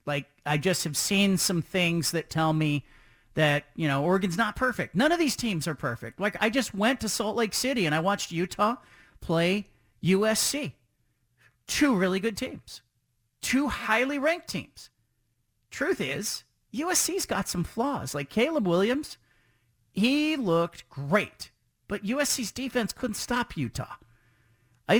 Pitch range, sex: 160-235 Hz, male